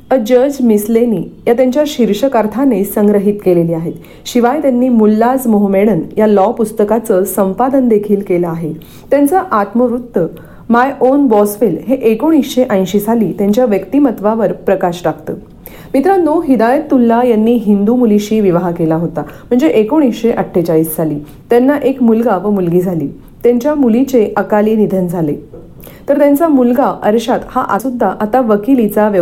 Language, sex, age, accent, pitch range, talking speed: Marathi, female, 40-59, native, 190-255 Hz, 115 wpm